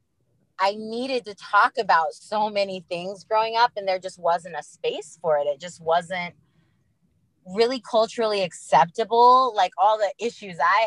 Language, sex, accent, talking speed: English, female, American, 160 wpm